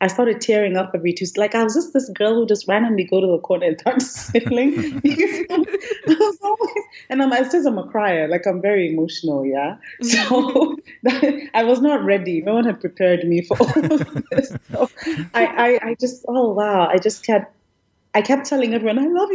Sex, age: female, 30-49